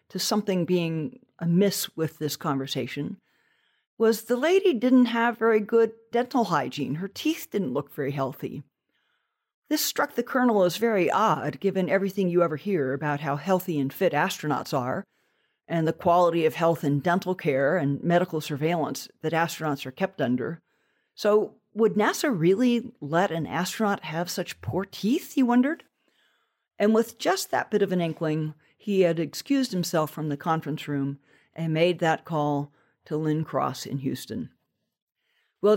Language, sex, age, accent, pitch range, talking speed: English, female, 50-69, American, 150-210 Hz, 160 wpm